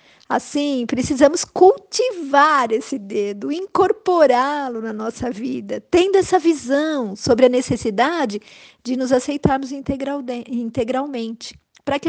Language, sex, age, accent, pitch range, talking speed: Portuguese, female, 50-69, Brazilian, 230-295 Hz, 110 wpm